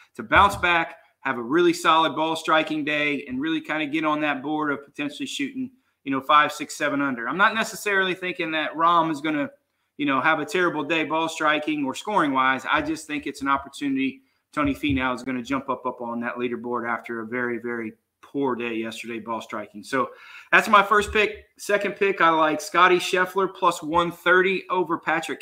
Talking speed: 205 wpm